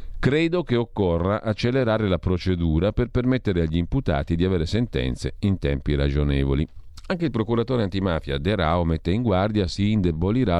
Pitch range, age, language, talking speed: 80-115 Hz, 40-59, Italian, 155 wpm